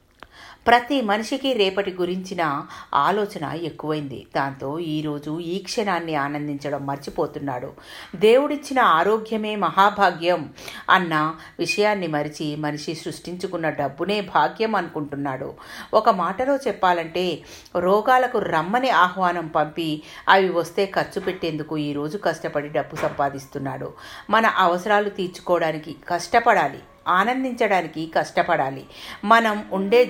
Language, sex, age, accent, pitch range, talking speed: Telugu, female, 50-69, native, 160-215 Hz, 90 wpm